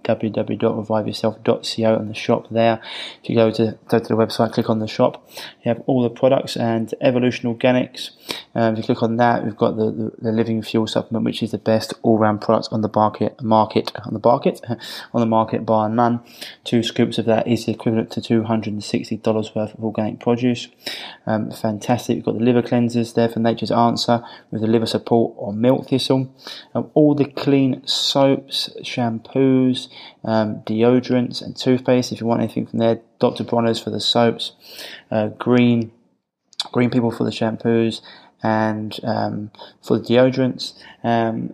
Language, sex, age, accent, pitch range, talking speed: English, male, 20-39, British, 110-120 Hz, 180 wpm